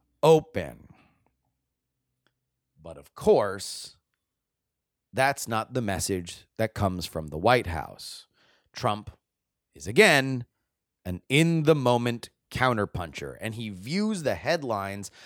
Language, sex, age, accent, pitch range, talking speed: English, male, 30-49, American, 105-155 Hz, 105 wpm